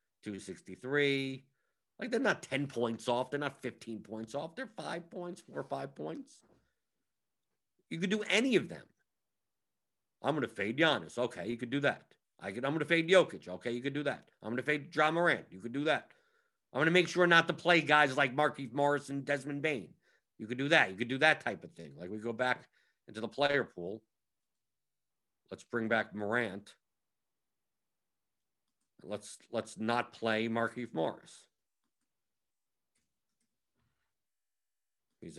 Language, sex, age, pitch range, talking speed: English, male, 50-69, 110-145 Hz, 170 wpm